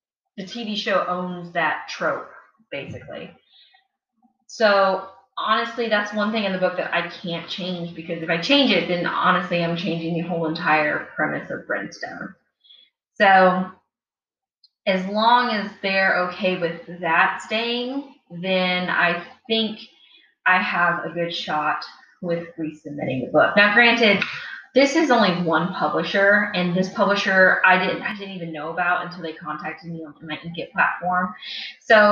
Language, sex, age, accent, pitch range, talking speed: English, female, 20-39, American, 170-210 Hz, 150 wpm